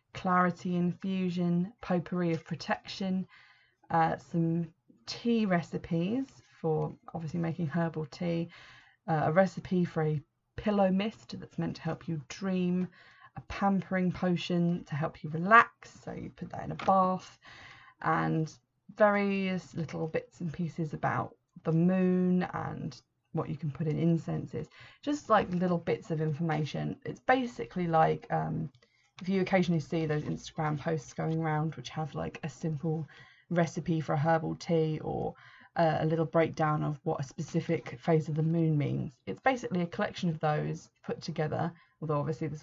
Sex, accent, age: female, British, 20-39